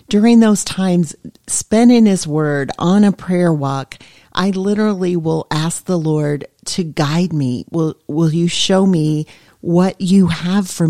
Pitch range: 155-195 Hz